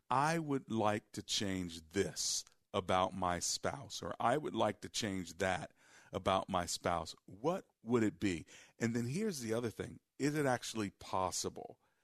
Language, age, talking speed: English, 40-59, 165 wpm